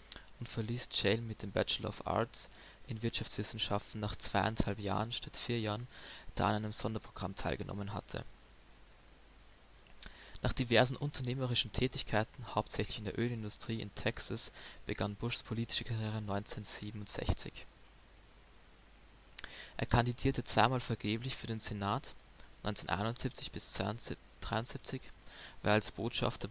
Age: 20-39